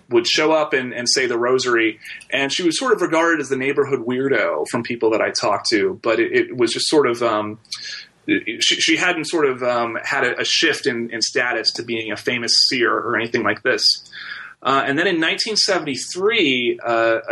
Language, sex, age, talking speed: English, male, 30-49, 210 wpm